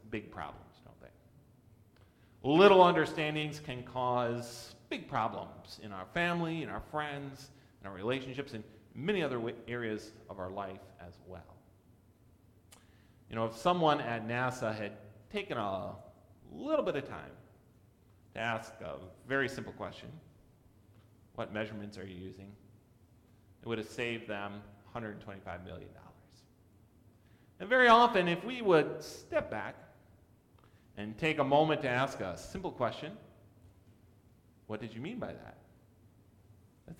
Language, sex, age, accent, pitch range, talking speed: English, male, 30-49, American, 105-140 Hz, 135 wpm